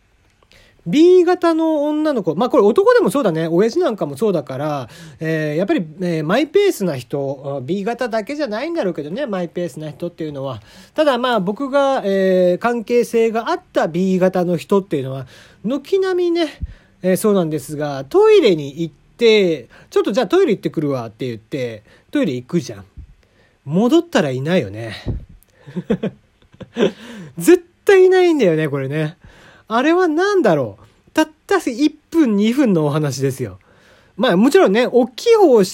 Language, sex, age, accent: Japanese, male, 40-59, native